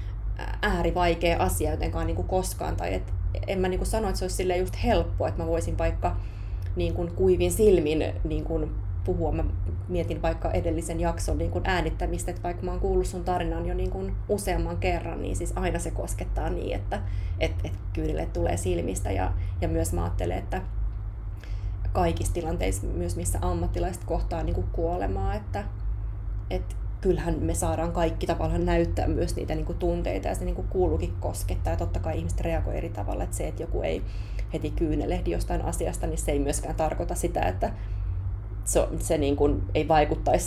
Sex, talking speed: female, 175 wpm